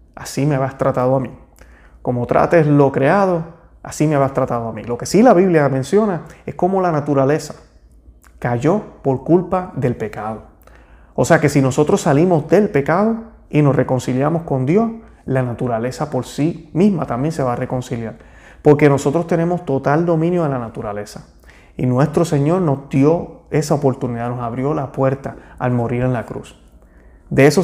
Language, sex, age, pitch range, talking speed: Spanish, male, 30-49, 125-165 Hz, 175 wpm